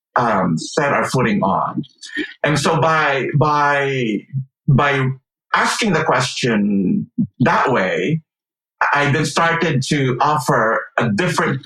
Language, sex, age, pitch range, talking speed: English, male, 50-69, 125-155 Hz, 115 wpm